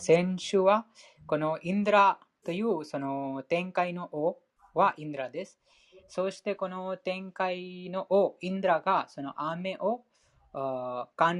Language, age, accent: Japanese, 20-39, Indian